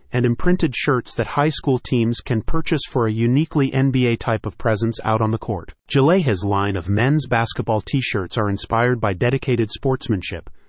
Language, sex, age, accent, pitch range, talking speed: English, male, 30-49, American, 105-135 Hz, 180 wpm